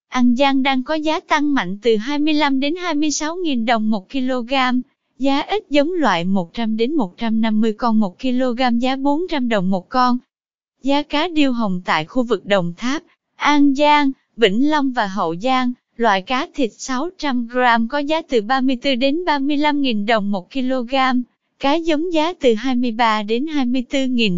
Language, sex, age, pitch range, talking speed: Vietnamese, female, 20-39, 230-290 Hz, 160 wpm